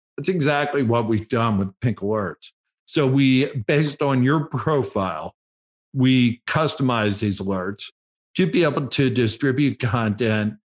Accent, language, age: American, English, 50-69